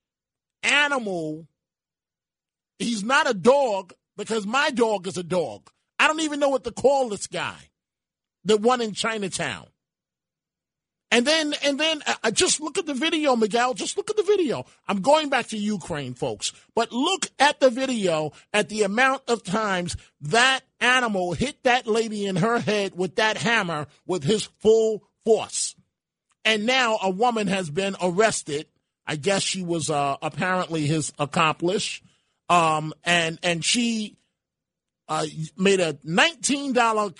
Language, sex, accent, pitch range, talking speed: English, male, American, 170-240 Hz, 150 wpm